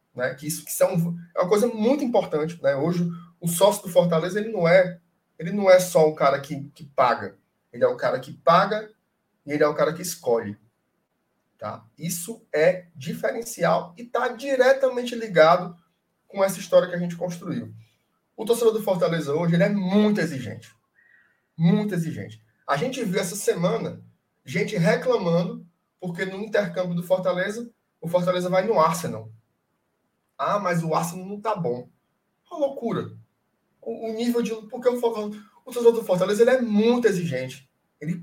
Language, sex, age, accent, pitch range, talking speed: Portuguese, male, 20-39, Brazilian, 165-225 Hz, 155 wpm